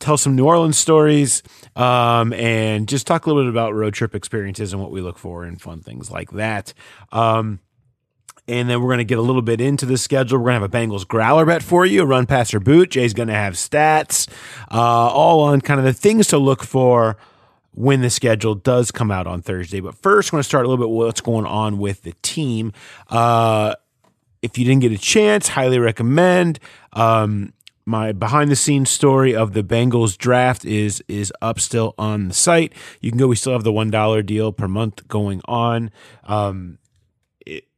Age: 30-49